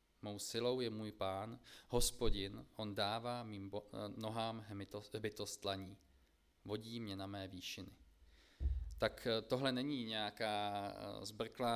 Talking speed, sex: 105 wpm, male